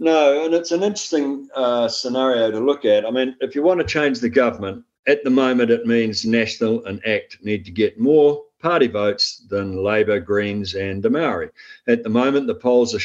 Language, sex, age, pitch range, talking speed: English, male, 50-69, 105-155 Hz, 205 wpm